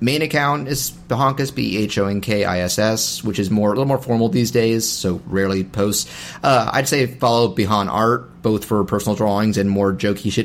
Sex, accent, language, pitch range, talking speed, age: male, American, English, 95-115 Hz, 170 wpm, 30-49